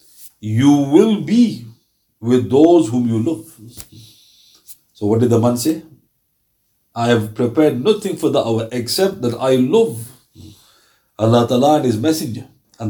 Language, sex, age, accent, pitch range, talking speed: English, male, 50-69, Indian, 120-165 Hz, 145 wpm